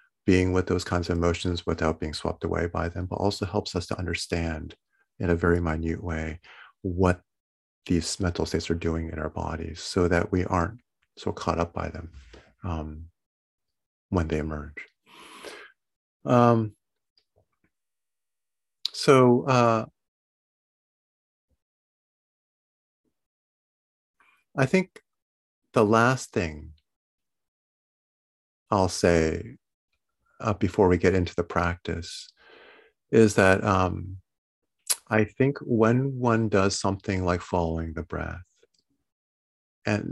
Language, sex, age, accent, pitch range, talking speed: English, male, 50-69, American, 80-105 Hz, 115 wpm